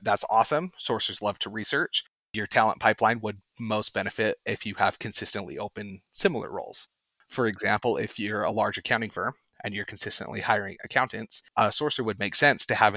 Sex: male